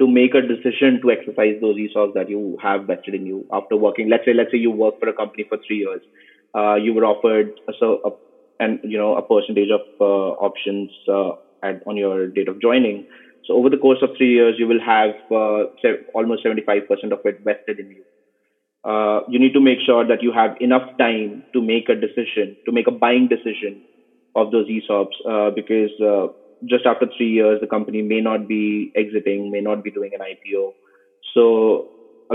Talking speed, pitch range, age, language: 210 wpm, 105-130 Hz, 20-39, English